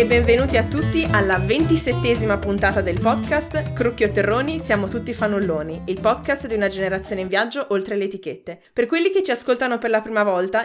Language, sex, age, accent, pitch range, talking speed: Italian, female, 20-39, native, 200-260 Hz, 180 wpm